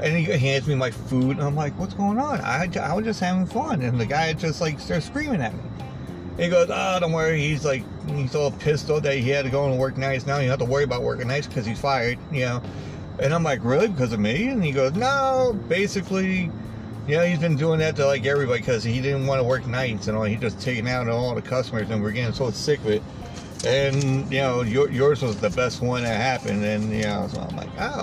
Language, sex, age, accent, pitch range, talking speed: English, male, 40-59, American, 115-145 Hz, 260 wpm